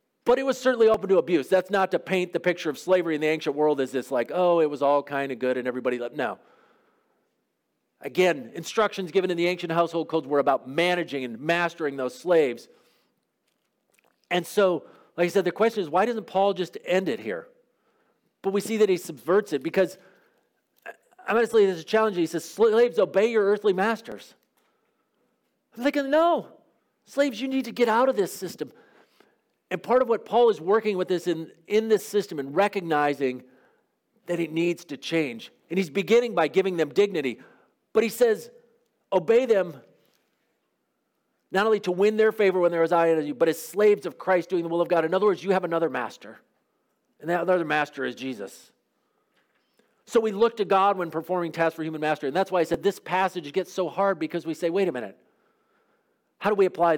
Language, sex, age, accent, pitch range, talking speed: English, male, 40-59, American, 165-215 Hz, 205 wpm